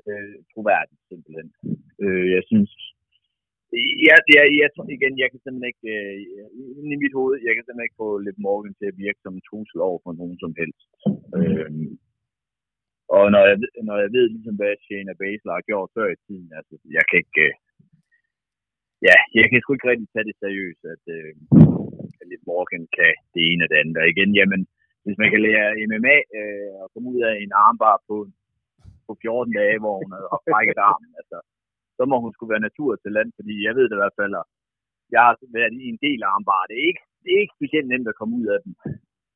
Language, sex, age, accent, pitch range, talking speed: Danish, male, 30-49, native, 100-135 Hz, 205 wpm